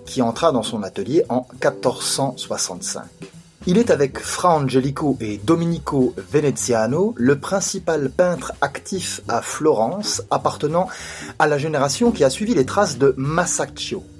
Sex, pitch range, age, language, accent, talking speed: male, 125-180 Hz, 30-49, French, French, 135 wpm